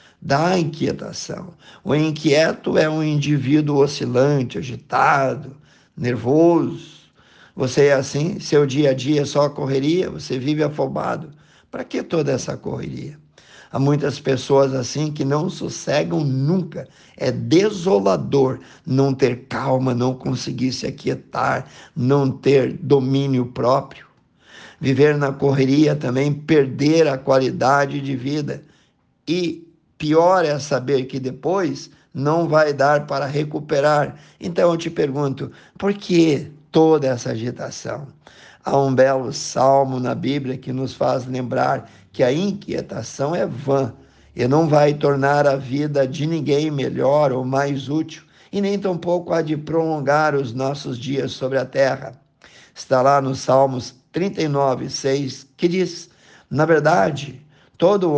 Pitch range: 135-155 Hz